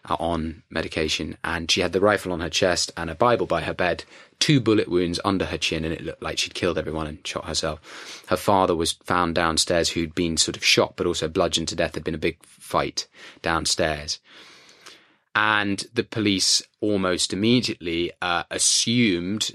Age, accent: 20-39, British